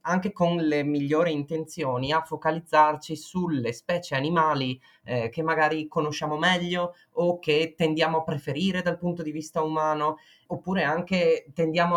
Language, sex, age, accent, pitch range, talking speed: Italian, male, 20-39, native, 150-185 Hz, 140 wpm